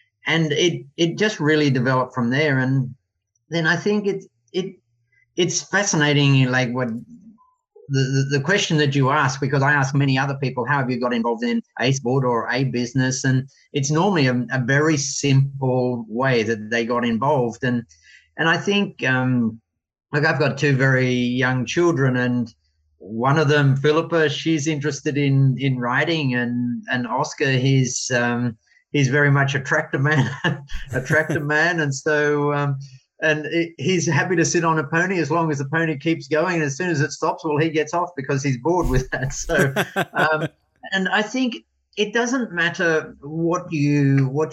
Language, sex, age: English, male, 30-49